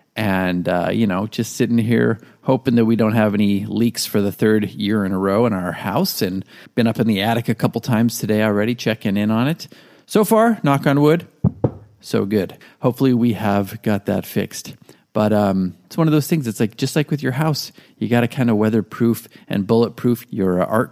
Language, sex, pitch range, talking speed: English, male, 100-135 Hz, 220 wpm